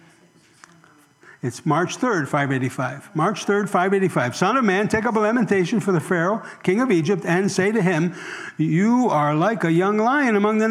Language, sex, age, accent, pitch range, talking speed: English, male, 60-79, American, 165-205 Hz, 180 wpm